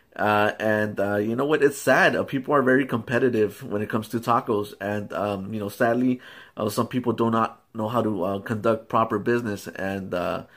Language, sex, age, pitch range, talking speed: English, male, 30-49, 105-130 Hz, 210 wpm